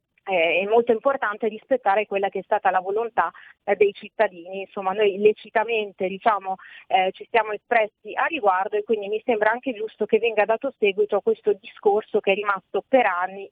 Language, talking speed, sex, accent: Italian, 185 wpm, female, native